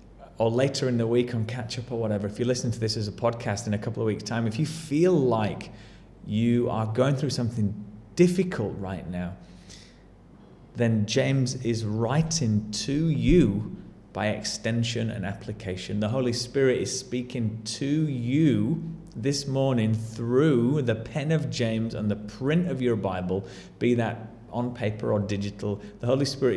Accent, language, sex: British, English, male